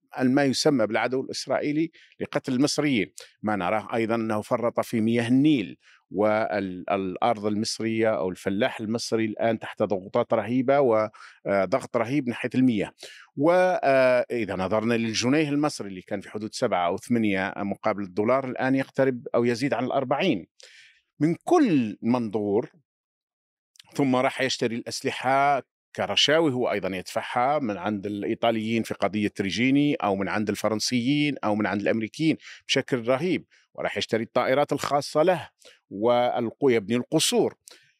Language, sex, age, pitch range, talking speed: Arabic, male, 50-69, 105-135 Hz, 130 wpm